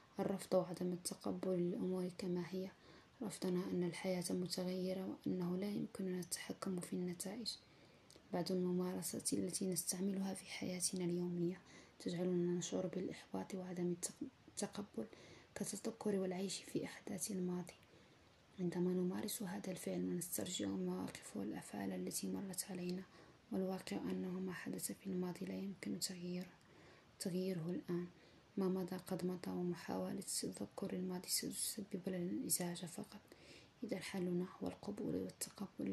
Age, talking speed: 20-39, 110 wpm